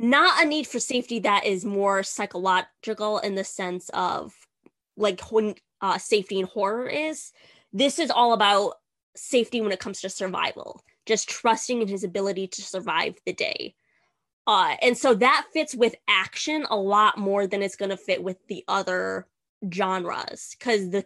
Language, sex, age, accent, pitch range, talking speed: English, female, 20-39, American, 195-235 Hz, 170 wpm